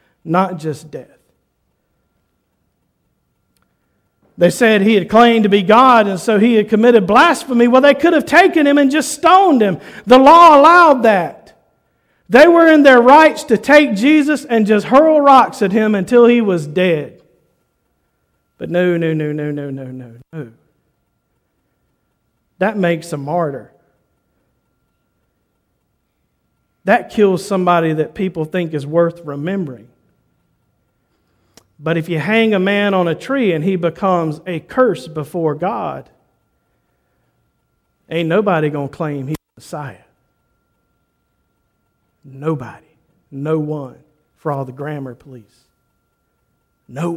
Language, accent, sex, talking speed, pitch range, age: English, American, male, 130 wpm, 145-215 Hz, 50-69